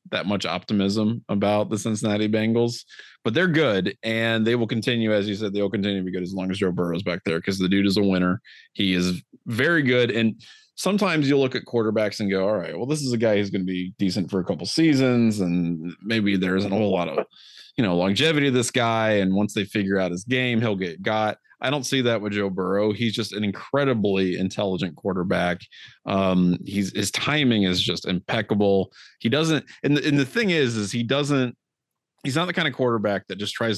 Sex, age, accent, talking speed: male, 30-49, American, 225 wpm